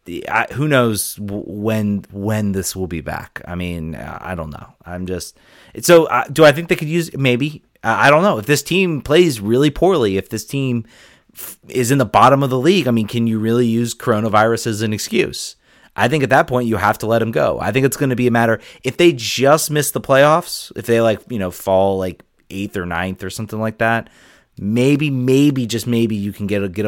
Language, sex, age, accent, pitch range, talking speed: English, male, 30-49, American, 100-130 Hz, 230 wpm